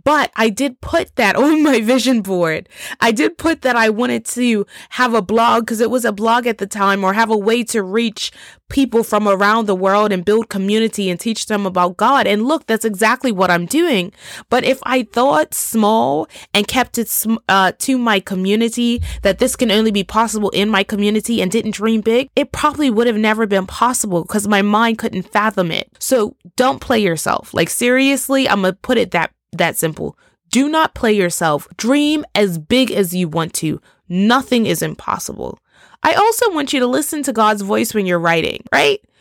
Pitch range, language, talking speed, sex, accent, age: 195-255 Hz, English, 200 wpm, female, American, 20-39